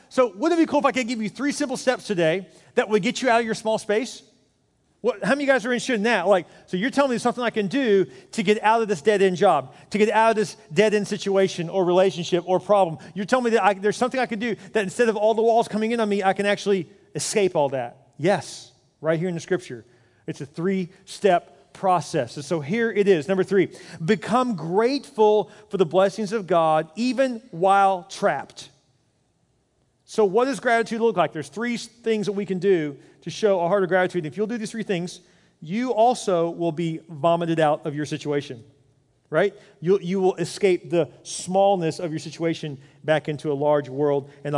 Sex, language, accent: male, English, American